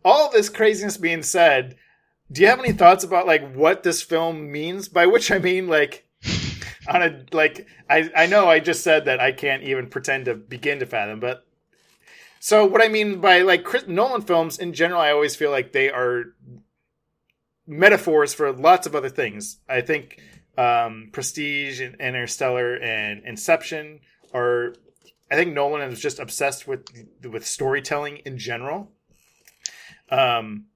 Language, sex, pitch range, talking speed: English, male, 135-205 Hz, 165 wpm